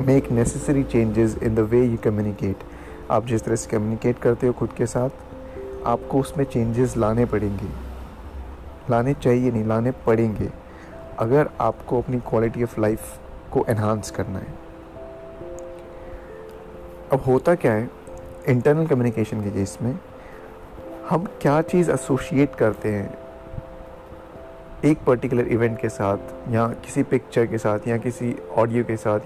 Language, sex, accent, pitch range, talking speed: Hindi, male, native, 100-125 Hz, 140 wpm